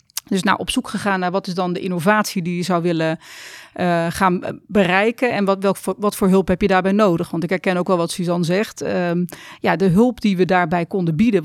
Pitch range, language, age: 185-225 Hz, Dutch, 40-59